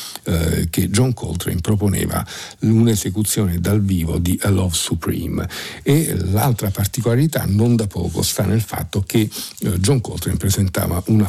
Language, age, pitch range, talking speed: Italian, 50-69, 90-110 Hz, 135 wpm